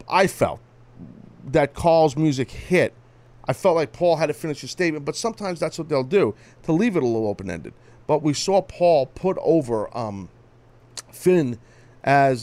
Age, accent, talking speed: 40-59, American, 180 wpm